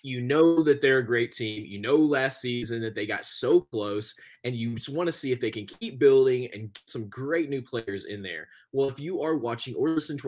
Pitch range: 120-195 Hz